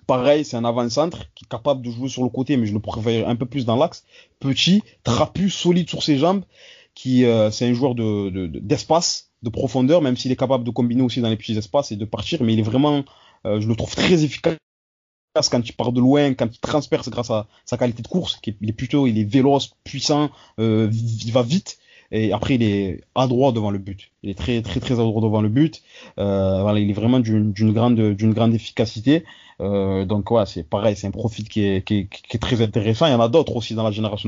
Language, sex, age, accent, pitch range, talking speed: French, male, 20-39, French, 105-130 Hz, 245 wpm